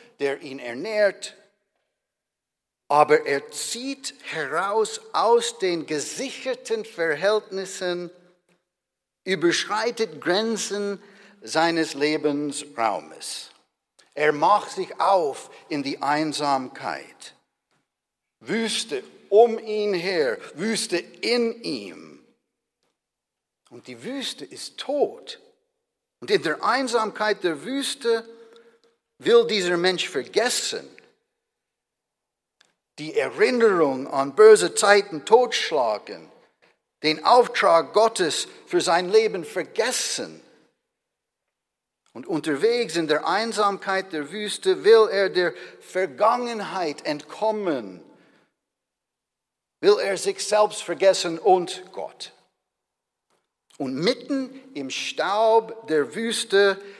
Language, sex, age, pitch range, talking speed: German, male, 60-79, 180-260 Hz, 85 wpm